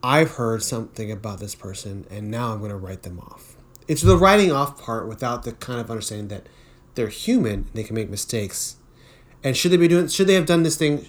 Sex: male